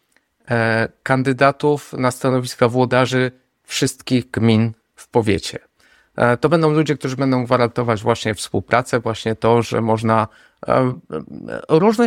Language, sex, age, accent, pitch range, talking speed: Polish, male, 30-49, native, 115-160 Hz, 105 wpm